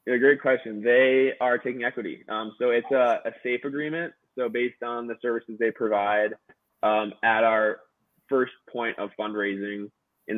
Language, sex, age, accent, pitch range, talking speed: English, male, 20-39, American, 105-120 Hz, 170 wpm